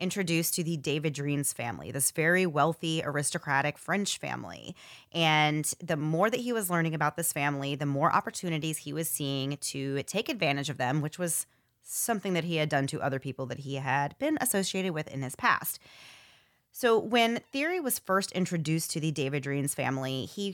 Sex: female